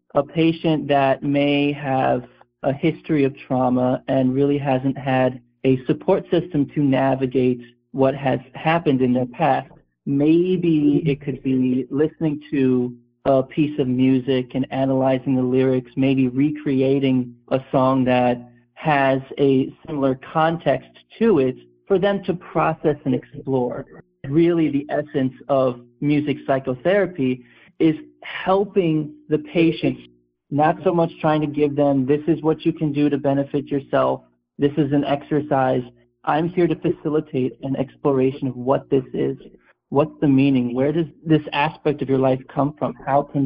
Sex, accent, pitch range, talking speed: male, American, 130-150 Hz, 150 wpm